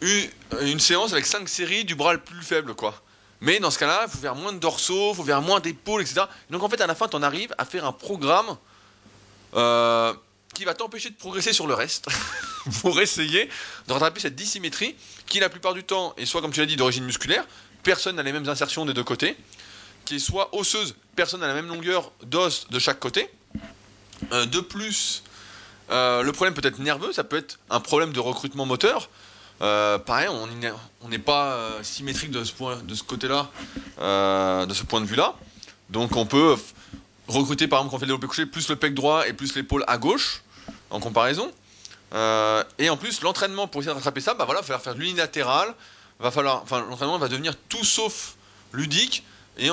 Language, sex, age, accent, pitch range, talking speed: French, male, 20-39, French, 110-170 Hz, 210 wpm